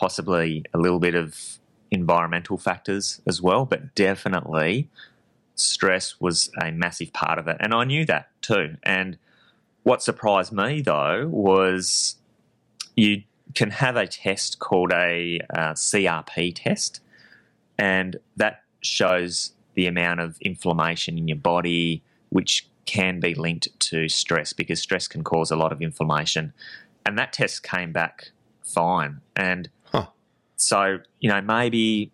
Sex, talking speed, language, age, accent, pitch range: male, 140 wpm, English, 20-39, Australian, 85-115 Hz